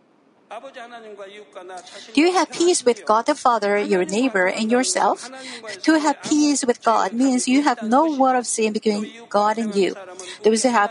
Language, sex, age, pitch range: Korean, female, 50-69, 225-300 Hz